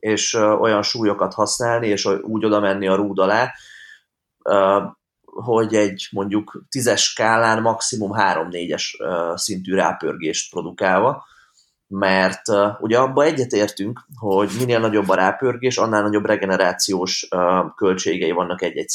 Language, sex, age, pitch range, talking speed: Hungarian, male, 20-39, 95-115 Hz, 115 wpm